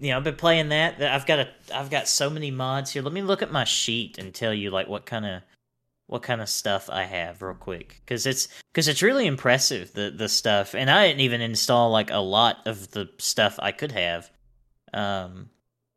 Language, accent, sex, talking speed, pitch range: English, American, male, 230 wpm, 110-140 Hz